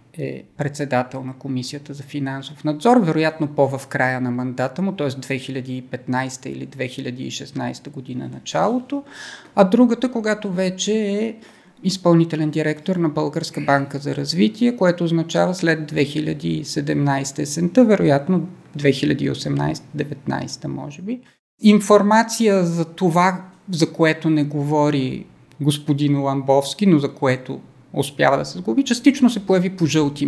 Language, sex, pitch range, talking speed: Bulgarian, male, 145-200 Hz, 120 wpm